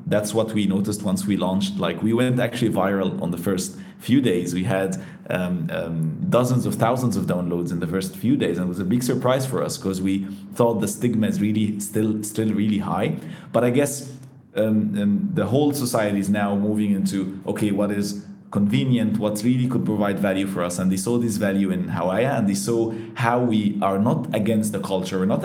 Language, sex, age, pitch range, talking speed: English, male, 30-49, 100-120 Hz, 215 wpm